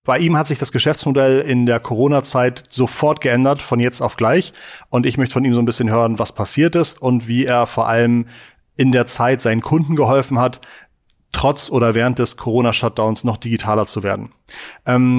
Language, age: German, 30-49